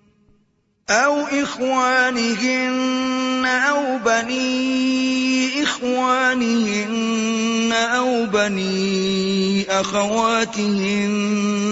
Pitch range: 195-255 Hz